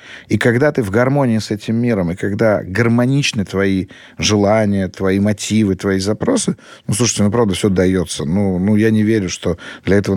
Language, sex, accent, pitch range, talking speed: Russian, male, native, 95-115 Hz, 185 wpm